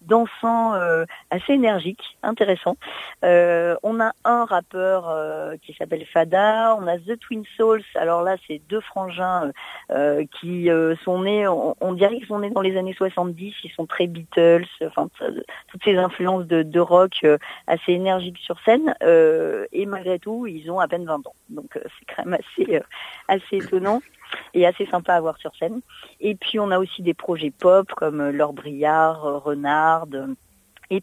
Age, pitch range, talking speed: 40-59, 165-200 Hz, 170 wpm